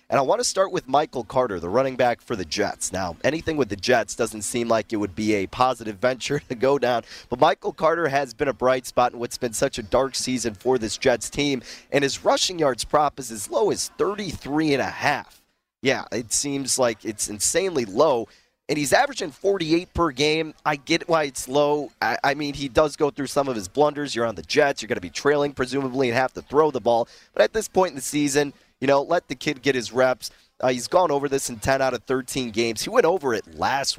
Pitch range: 120-145 Hz